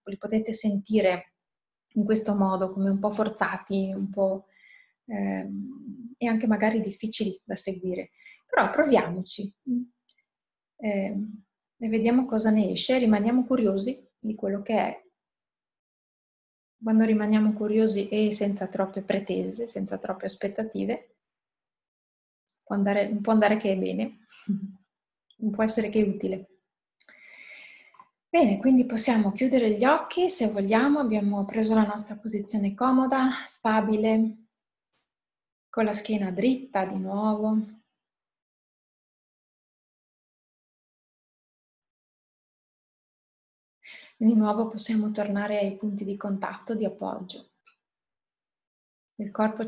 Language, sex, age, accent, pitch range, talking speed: Italian, female, 30-49, native, 200-225 Hz, 105 wpm